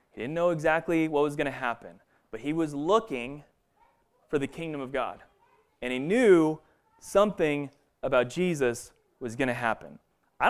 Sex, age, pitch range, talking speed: male, 30-49, 120-165 Hz, 165 wpm